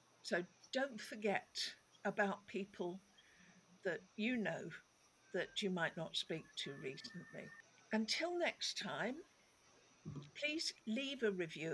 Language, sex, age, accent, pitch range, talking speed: English, female, 60-79, British, 175-230 Hz, 110 wpm